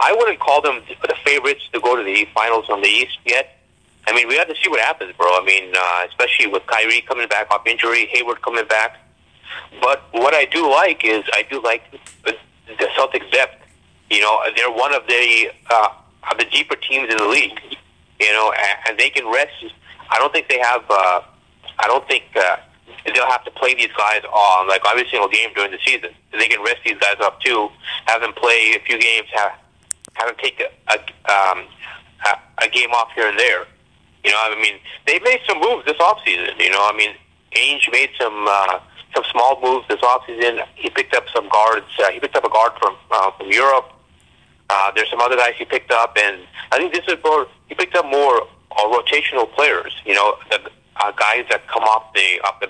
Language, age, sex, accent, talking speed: English, 30-49, male, American, 220 wpm